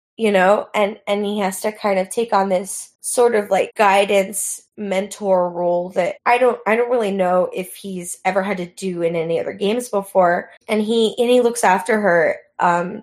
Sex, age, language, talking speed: female, 10-29, English, 205 wpm